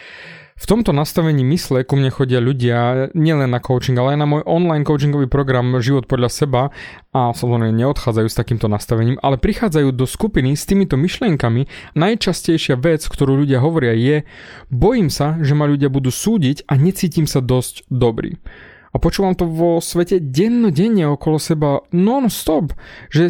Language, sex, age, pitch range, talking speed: Slovak, male, 20-39, 120-160 Hz, 160 wpm